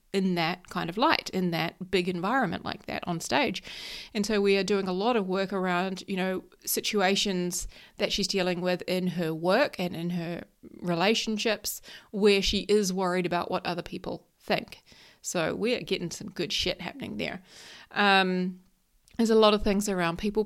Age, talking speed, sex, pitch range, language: 30-49, 185 wpm, female, 185-225 Hz, English